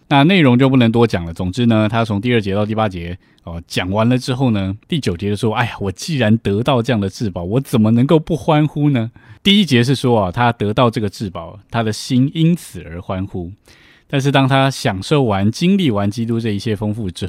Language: Chinese